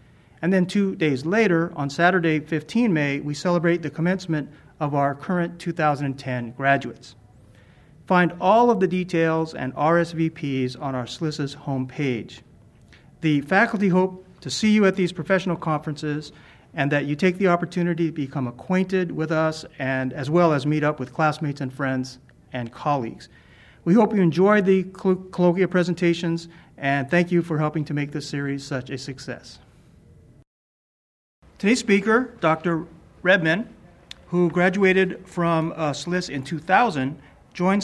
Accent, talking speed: American, 150 wpm